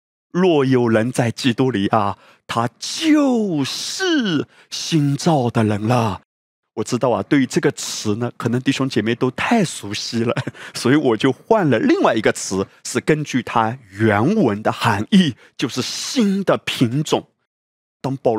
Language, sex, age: Chinese, male, 30-49